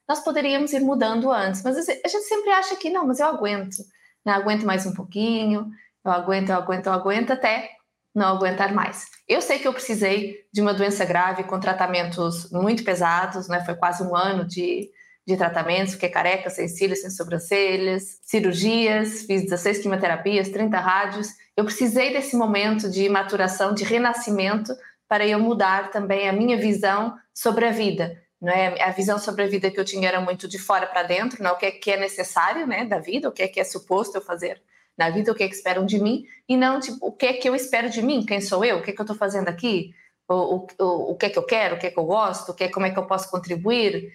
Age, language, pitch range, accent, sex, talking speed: 20-39, Portuguese, 185-215 Hz, Brazilian, female, 220 wpm